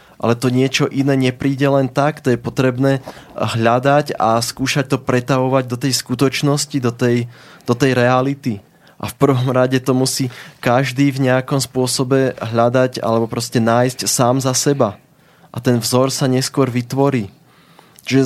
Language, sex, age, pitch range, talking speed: Slovak, male, 20-39, 120-140 Hz, 155 wpm